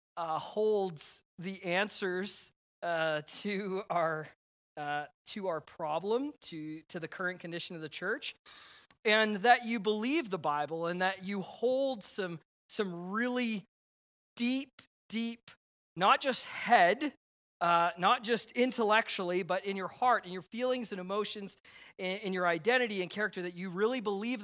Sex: male